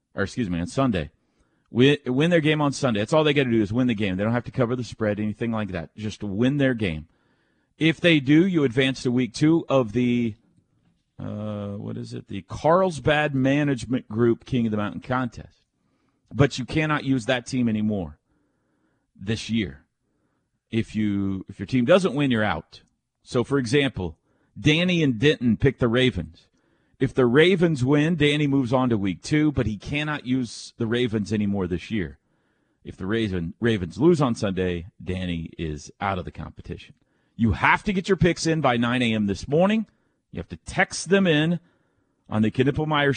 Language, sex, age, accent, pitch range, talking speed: English, male, 40-59, American, 105-140 Hz, 190 wpm